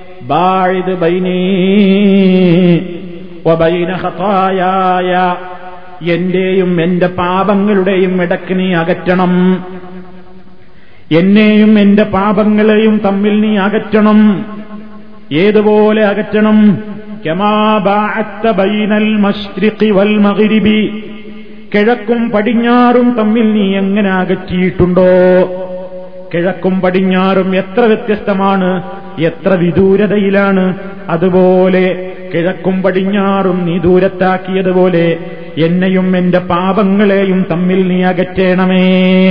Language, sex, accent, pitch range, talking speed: Malayalam, male, native, 180-205 Hz, 60 wpm